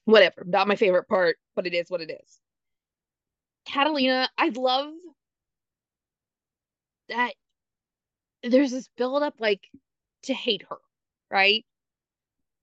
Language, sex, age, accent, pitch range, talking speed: English, female, 20-39, American, 210-280 Hz, 110 wpm